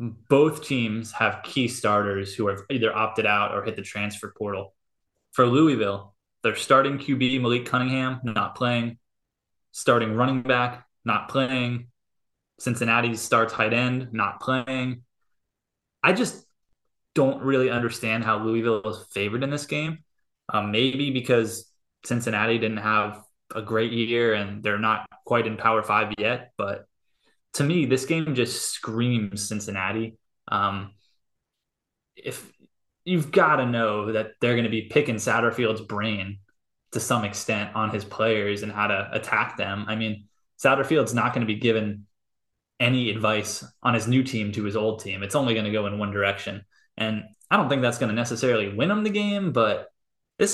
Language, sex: English, male